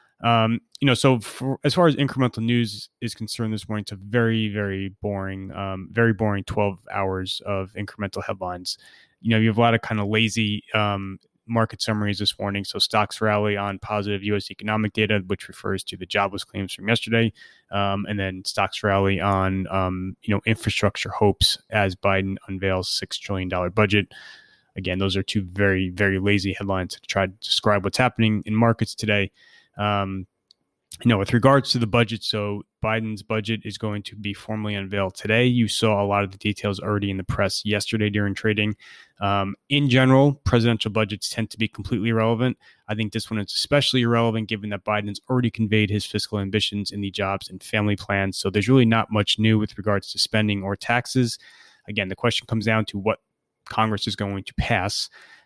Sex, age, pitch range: male, 20-39, 100-115 Hz